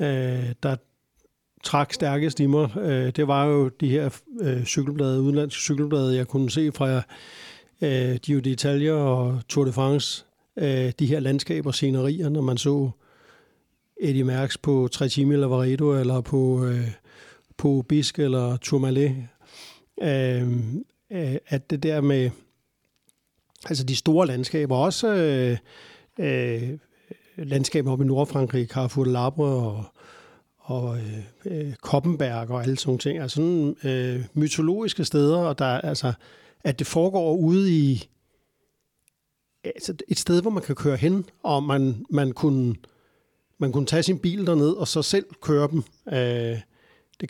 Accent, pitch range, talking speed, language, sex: native, 130-155 Hz, 130 wpm, Danish, male